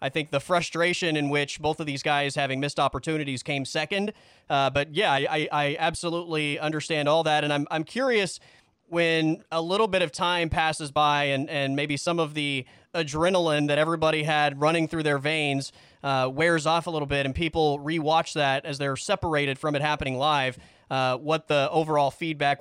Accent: American